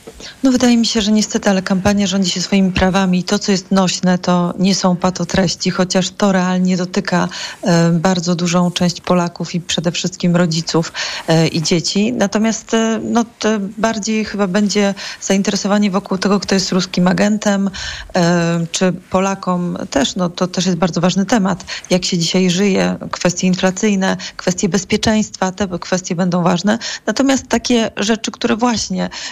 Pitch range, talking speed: 180-215 Hz, 150 wpm